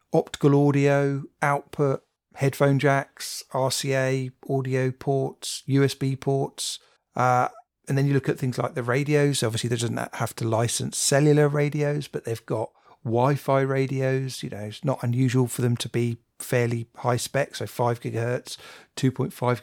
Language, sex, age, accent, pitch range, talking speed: English, male, 40-59, British, 120-140 Hz, 150 wpm